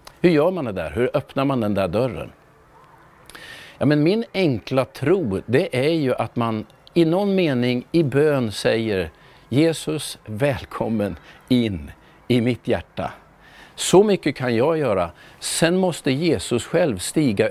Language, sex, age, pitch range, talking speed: Swedish, male, 50-69, 115-160 Hz, 145 wpm